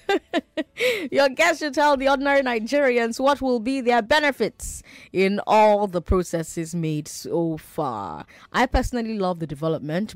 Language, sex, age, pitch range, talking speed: English, female, 20-39, 165-265 Hz, 140 wpm